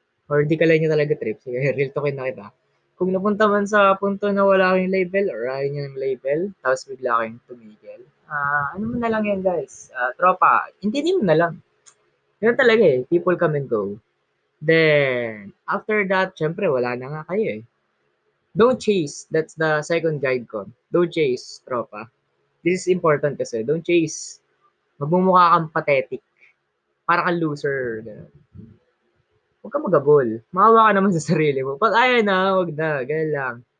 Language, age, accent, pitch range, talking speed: Filipino, 20-39, native, 140-195 Hz, 170 wpm